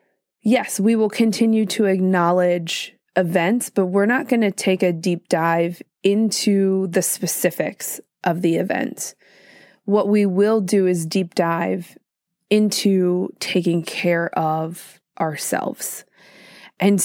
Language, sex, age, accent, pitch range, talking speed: English, female, 20-39, American, 175-200 Hz, 125 wpm